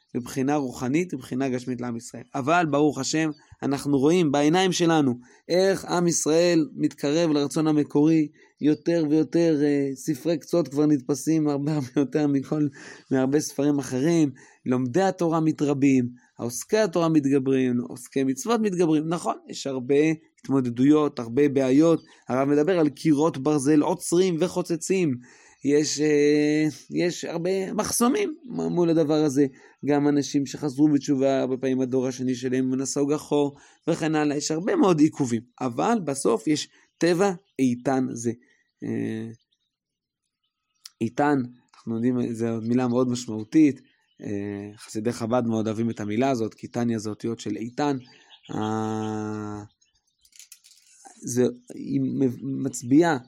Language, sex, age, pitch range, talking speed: Hebrew, male, 20-39, 125-155 Hz, 120 wpm